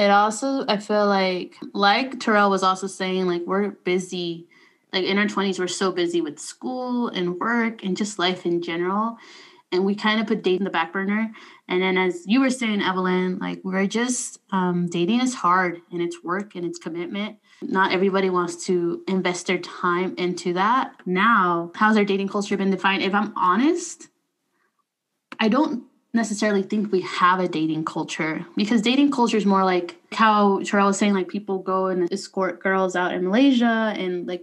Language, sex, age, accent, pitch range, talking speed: English, female, 20-39, American, 180-220 Hz, 185 wpm